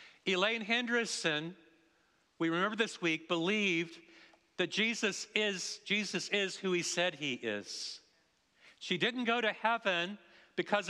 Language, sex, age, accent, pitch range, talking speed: English, male, 50-69, American, 180-225 Hz, 120 wpm